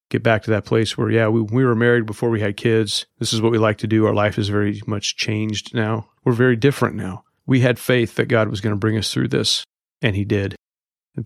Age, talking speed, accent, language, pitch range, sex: 40-59, 260 wpm, American, English, 100-115 Hz, male